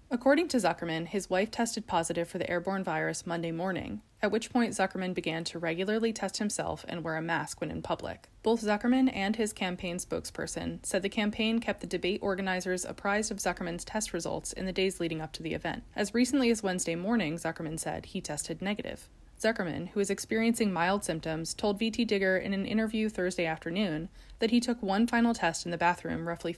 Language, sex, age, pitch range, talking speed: English, female, 20-39, 165-215 Hz, 200 wpm